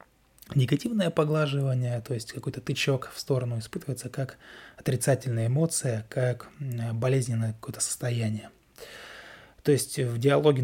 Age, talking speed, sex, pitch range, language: 20-39, 115 wpm, male, 115-140 Hz, Russian